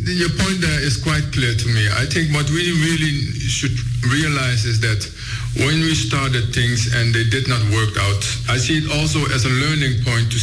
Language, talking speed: English, 205 wpm